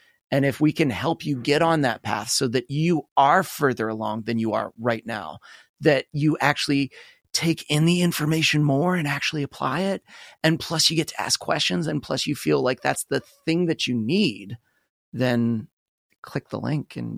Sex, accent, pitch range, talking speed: male, American, 120-165 Hz, 195 wpm